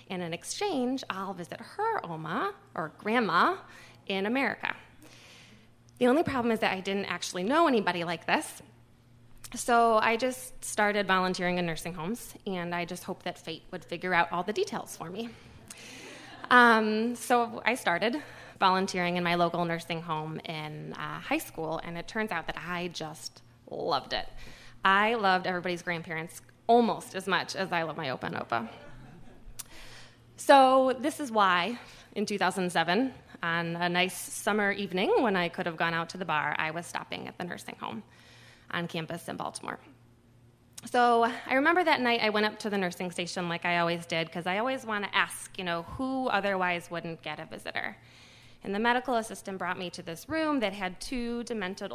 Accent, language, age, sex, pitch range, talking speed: American, English, 20-39, female, 165-215 Hz, 180 wpm